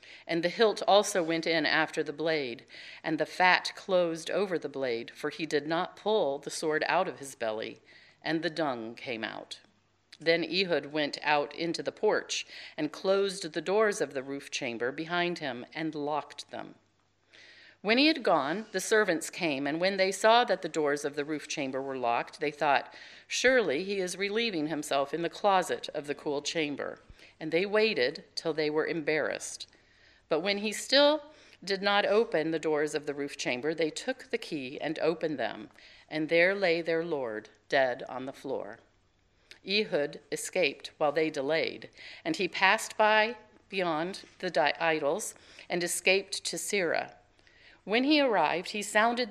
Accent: American